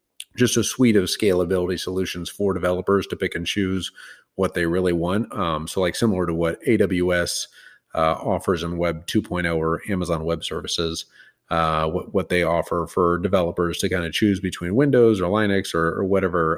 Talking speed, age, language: 180 wpm, 30-49, English